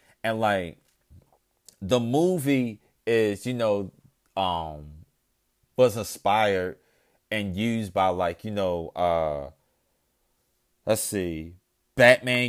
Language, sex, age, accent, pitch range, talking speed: English, male, 30-49, American, 90-120 Hz, 95 wpm